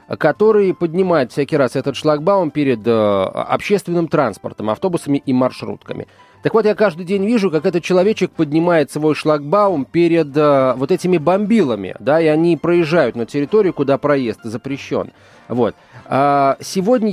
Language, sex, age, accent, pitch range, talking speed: Russian, male, 30-49, native, 130-180 Hz, 140 wpm